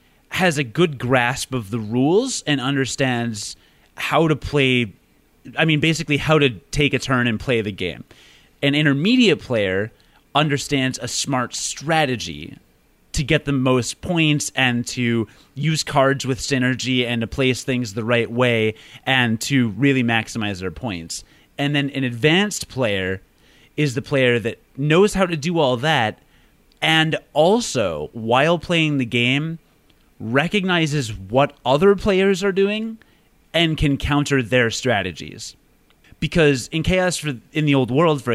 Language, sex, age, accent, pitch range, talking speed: English, male, 30-49, American, 120-155 Hz, 150 wpm